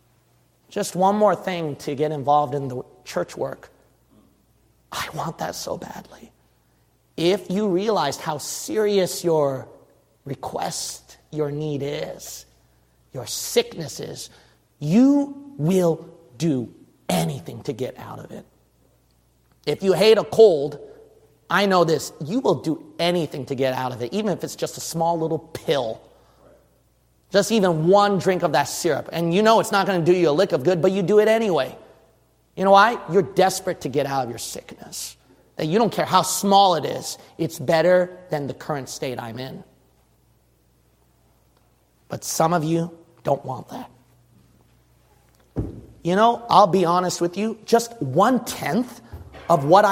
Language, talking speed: English, 160 wpm